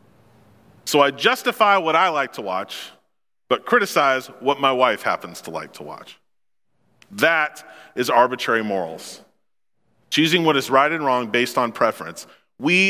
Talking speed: 150 wpm